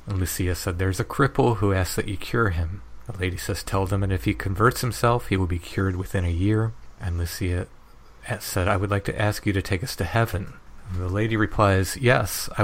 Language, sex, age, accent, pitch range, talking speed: English, male, 40-59, American, 95-110 Hz, 225 wpm